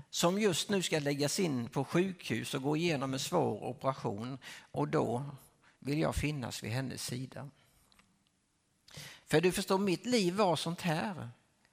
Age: 50-69